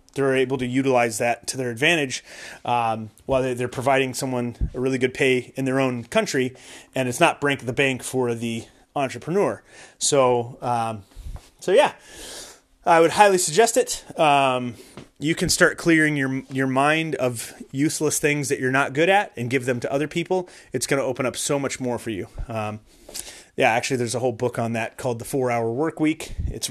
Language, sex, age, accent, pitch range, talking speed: English, male, 30-49, American, 125-165 Hz, 195 wpm